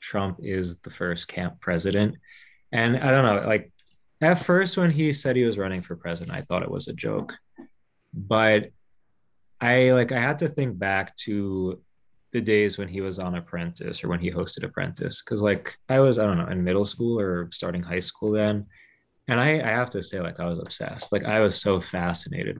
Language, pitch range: English, 95-120 Hz